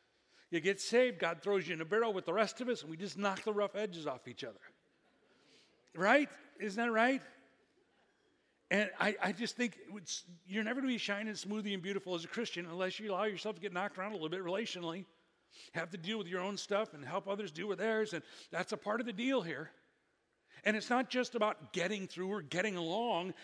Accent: American